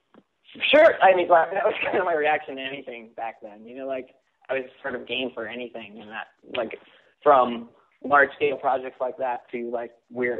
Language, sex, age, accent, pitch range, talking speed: English, male, 20-39, American, 125-145 Hz, 195 wpm